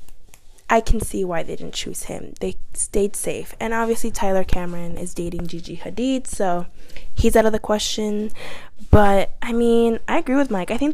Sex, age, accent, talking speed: female, 10-29, American, 185 wpm